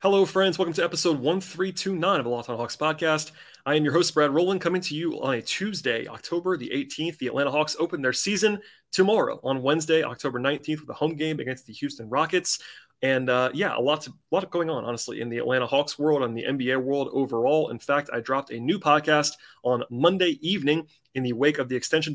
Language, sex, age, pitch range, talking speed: English, male, 30-49, 125-160 Hz, 220 wpm